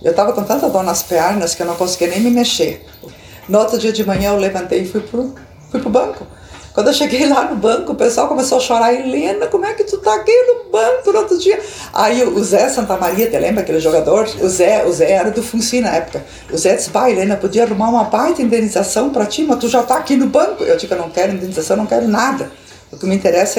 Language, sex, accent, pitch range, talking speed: Portuguese, female, Brazilian, 185-255 Hz, 255 wpm